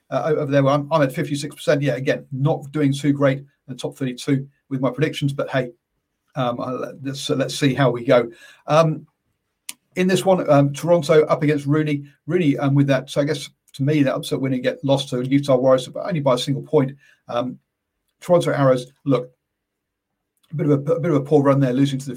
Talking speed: 220 wpm